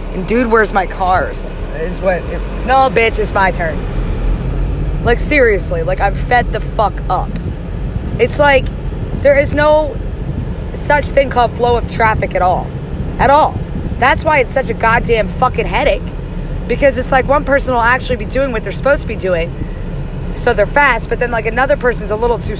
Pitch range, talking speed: 205-280 Hz, 180 wpm